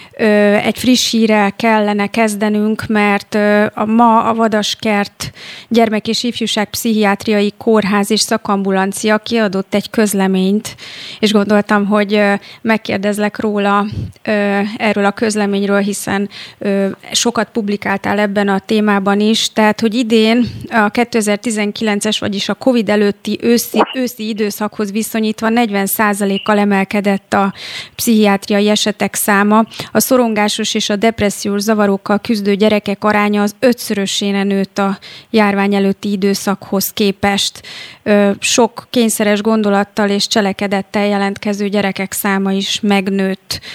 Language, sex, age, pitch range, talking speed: Hungarian, female, 30-49, 200-220 Hz, 110 wpm